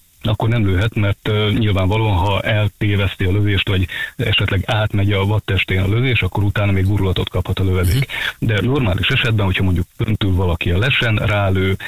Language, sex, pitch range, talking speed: Hungarian, male, 95-115 Hz, 165 wpm